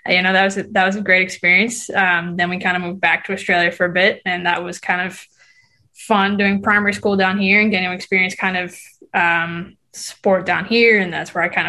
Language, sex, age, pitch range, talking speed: English, female, 20-39, 180-210 Hz, 235 wpm